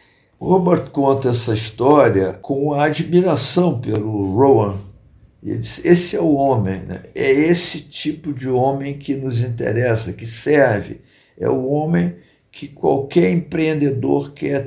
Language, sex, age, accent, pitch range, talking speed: Portuguese, male, 50-69, Brazilian, 115-150 Hz, 140 wpm